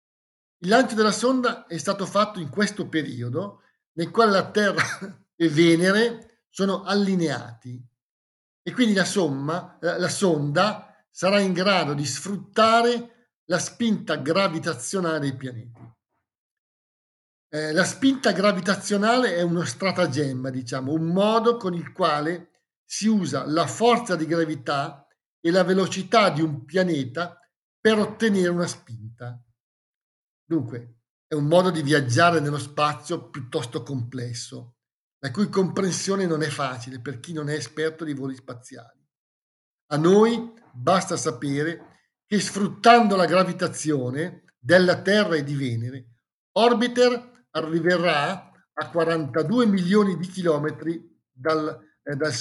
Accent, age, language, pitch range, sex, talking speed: native, 50-69, Italian, 145-195 Hz, male, 125 wpm